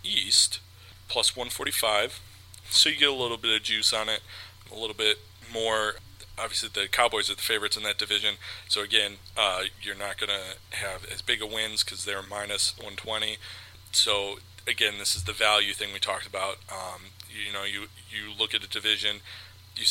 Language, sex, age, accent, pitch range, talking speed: English, male, 30-49, American, 95-110 Hz, 185 wpm